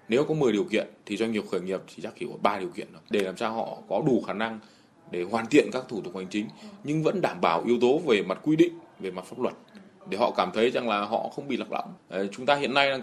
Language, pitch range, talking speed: Vietnamese, 95-135 Hz, 300 wpm